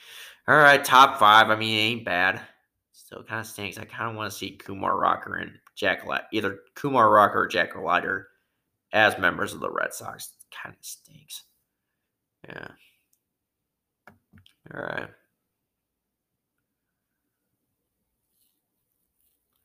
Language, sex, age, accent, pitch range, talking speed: English, male, 30-49, American, 105-125 Hz, 130 wpm